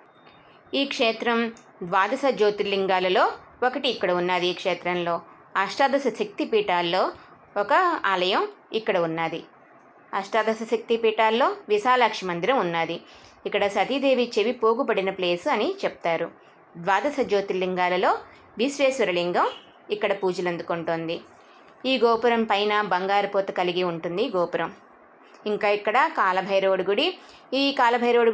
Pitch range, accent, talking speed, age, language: 185-240 Hz, native, 100 wpm, 20-39, Telugu